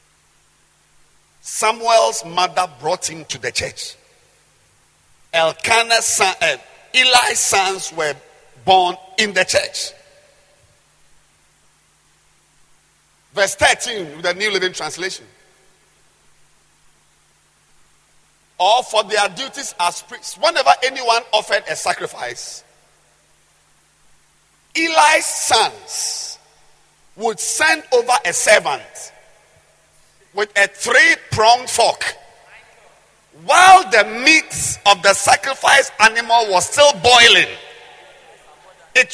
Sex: male